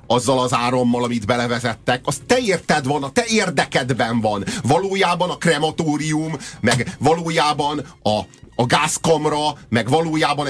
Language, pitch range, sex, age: Hungarian, 125-185 Hz, male, 30-49